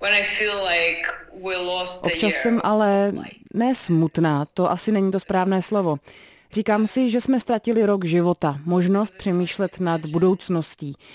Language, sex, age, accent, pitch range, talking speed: Czech, female, 30-49, native, 170-210 Hz, 120 wpm